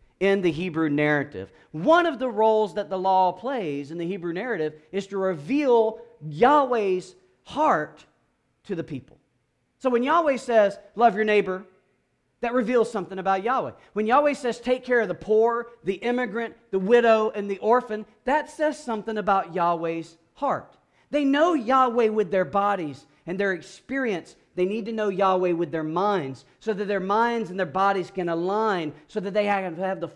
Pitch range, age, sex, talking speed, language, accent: 155-225 Hz, 40-59, male, 180 wpm, English, American